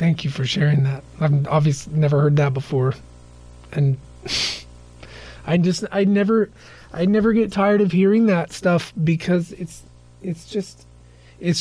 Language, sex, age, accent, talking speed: English, male, 30-49, American, 150 wpm